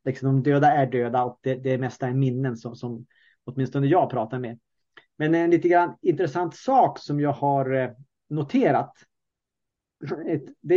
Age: 30-49